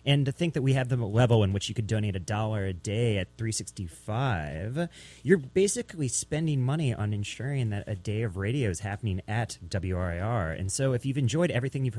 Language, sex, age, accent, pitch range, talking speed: English, male, 30-49, American, 100-140 Hz, 205 wpm